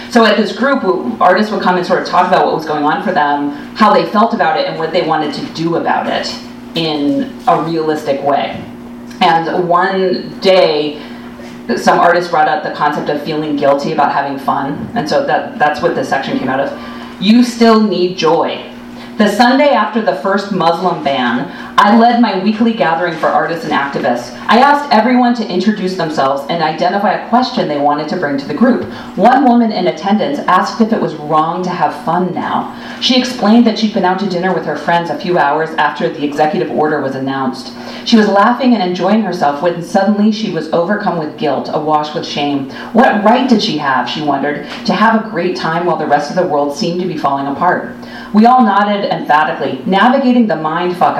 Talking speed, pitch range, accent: 205 wpm, 155-215 Hz, American